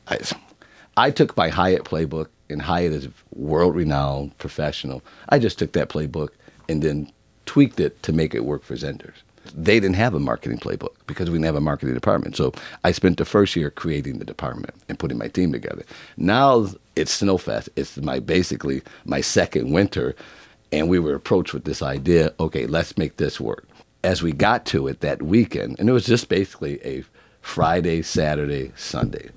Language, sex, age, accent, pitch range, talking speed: English, male, 50-69, American, 75-95 Hz, 185 wpm